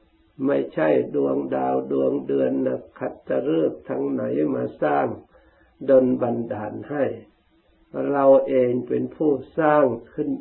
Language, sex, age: Thai, male, 60-79